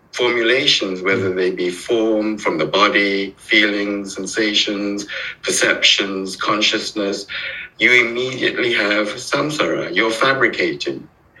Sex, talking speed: male, 95 wpm